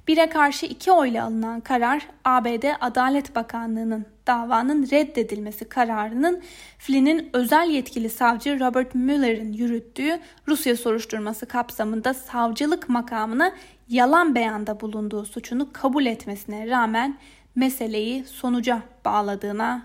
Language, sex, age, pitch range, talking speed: Turkish, female, 10-29, 230-285 Hz, 105 wpm